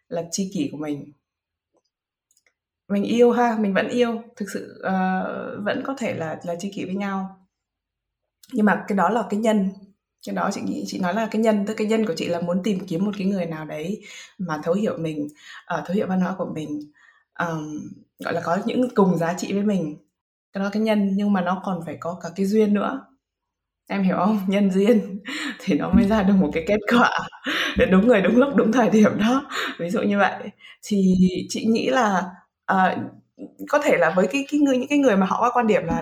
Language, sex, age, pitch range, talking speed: Vietnamese, female, 20-39, 170-220 Hz, 230 wpm